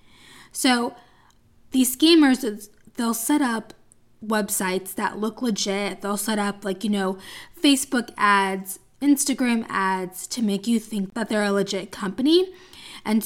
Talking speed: 135 wpm